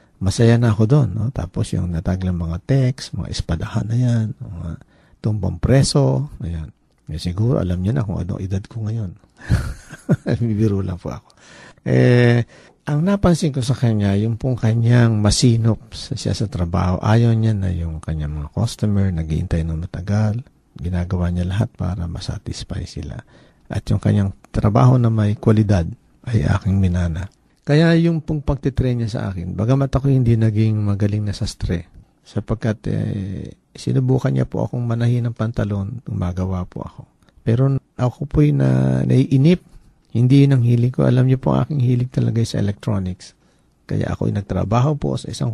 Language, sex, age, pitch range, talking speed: Filipino, male, 50-69, 90-120 Hz, 160 wpm